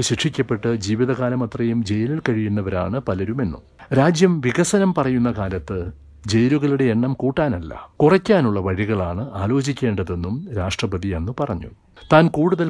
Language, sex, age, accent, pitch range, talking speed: Malayalam, male, 60-79, native, 105-135 Hz, 95 wpm